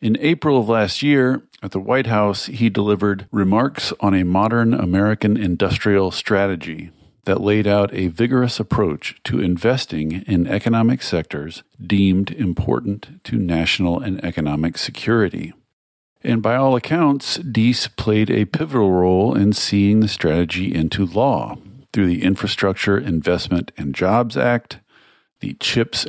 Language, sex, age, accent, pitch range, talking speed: English, male, 50-69, American, 90-115 Hz, 140 wpm